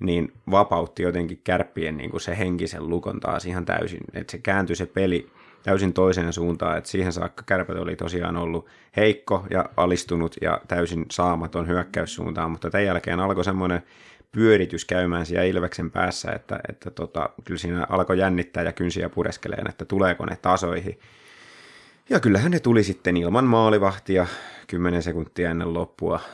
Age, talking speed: 30-49, 155 wpm